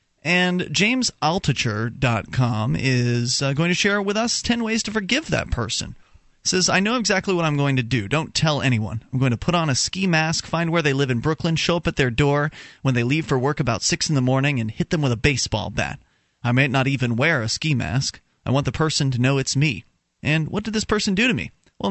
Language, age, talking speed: English, 30-49, 240 wpm